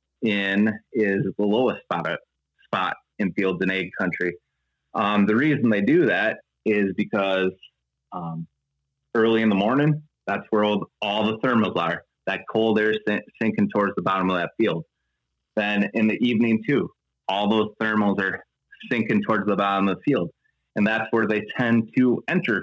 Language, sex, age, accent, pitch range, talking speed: English, male, 30-49, American, 90-110 Hz, 170 wpm